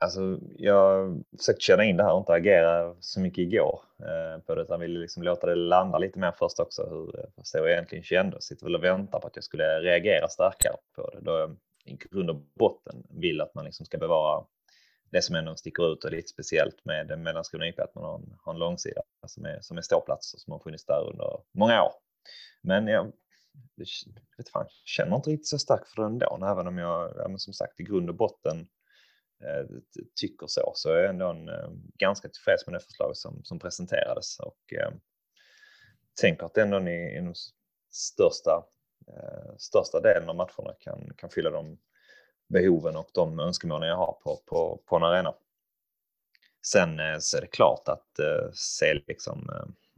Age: 30-49